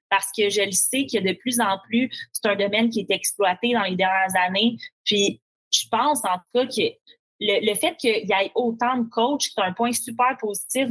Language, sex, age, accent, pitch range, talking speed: French, female, 20-39, Canadian, 190-235 Hz, 225 wpm